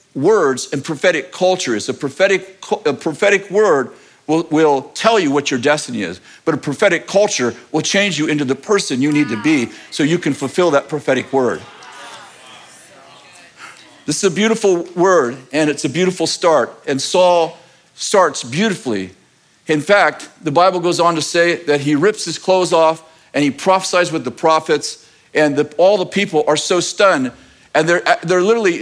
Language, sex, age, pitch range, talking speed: English, male, 50-69, 155-200 Hz, 175 wpm